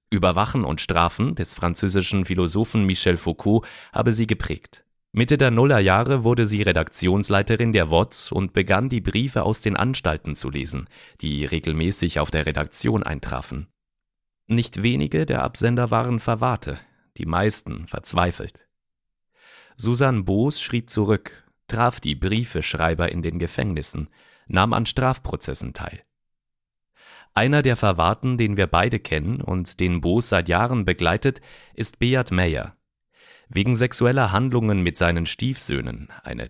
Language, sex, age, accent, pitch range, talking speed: German, male, 40-59, German, 85-120 Hz, 130 wpm